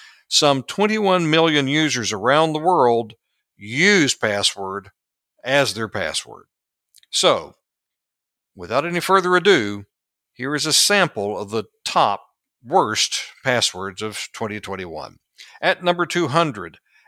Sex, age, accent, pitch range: male, 60-79, American, 115-160 Hz